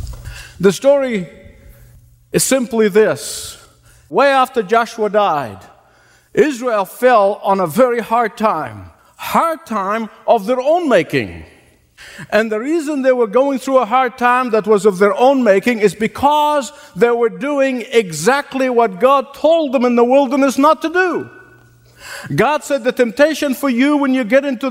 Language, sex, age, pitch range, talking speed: English, male, 50-69, 205-265 Hz, 155 wpm